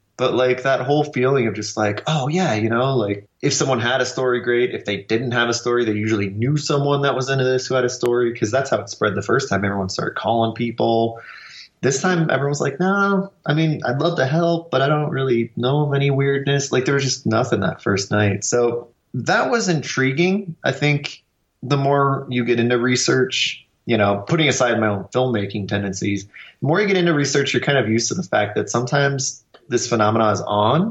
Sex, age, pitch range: male, 20-39, 110-140 Hz